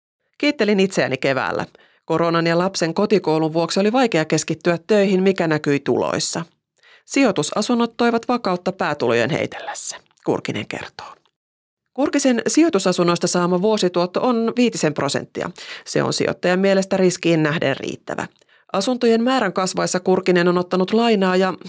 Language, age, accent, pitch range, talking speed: Finnish, 30-49, native, 150-210 Hz, 120 wpm